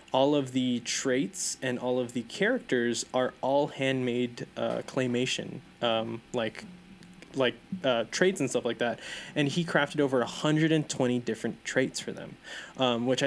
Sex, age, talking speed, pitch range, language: male, 10-29, 155 wpm, 120-145 Hz, English